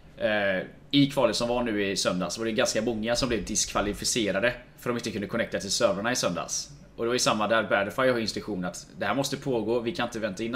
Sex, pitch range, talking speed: male, 105-135 Hz, 235 wpm